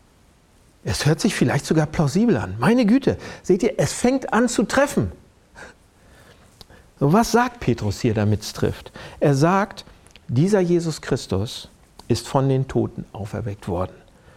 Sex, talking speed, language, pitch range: male, 145 wpm, German, 120-190 Hz